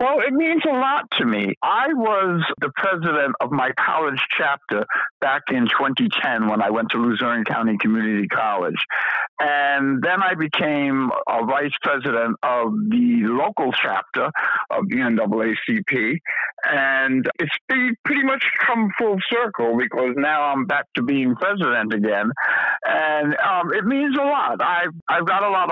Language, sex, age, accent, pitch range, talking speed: English, male, 60-79, American, 125-195 Hz, 155 wpm